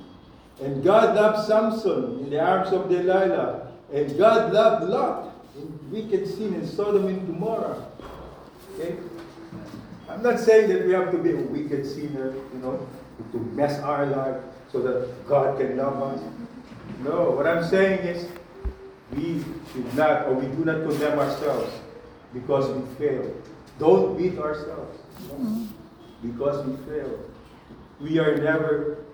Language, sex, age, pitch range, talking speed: English, male, 50-69, 135-175 Hz, 140 wpm